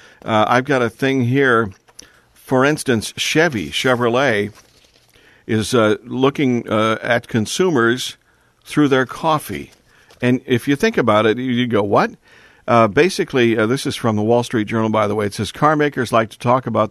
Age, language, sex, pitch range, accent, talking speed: 50-69, English, male, 110-130 Hz, American, 175 wpm